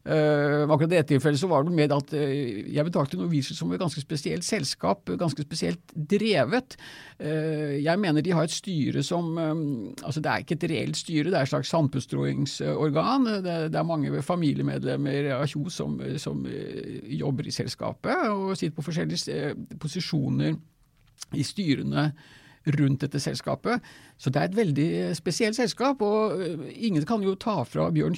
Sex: male